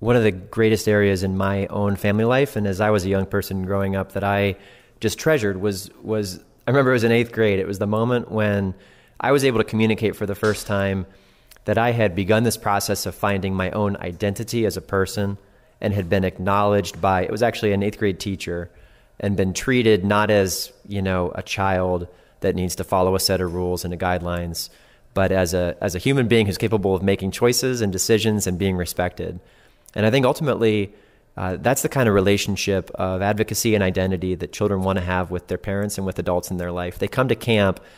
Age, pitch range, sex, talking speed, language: 30-49, 95-110 Hz, male, 220 wpm, English